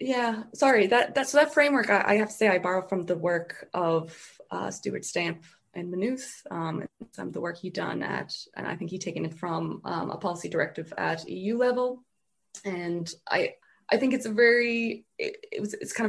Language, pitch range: English, 165-205 Hz